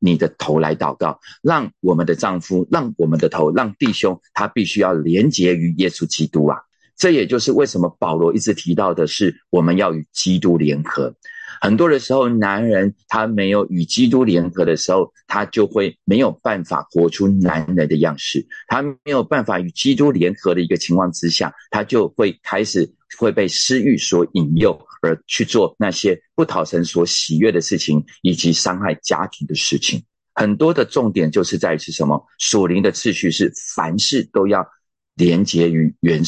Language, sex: Chinese, male